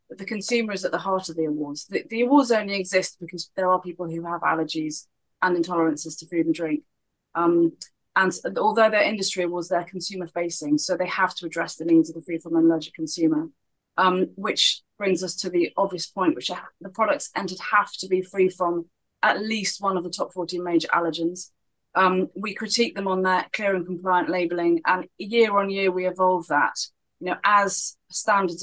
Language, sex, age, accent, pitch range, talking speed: English, female, 30-49, British, 170-195 Hz, 205 wpm